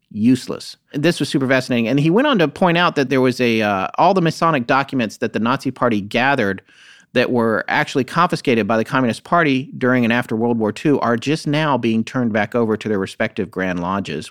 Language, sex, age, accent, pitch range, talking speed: English, male, 40-59, American, 110-145 Hz, 220 wpm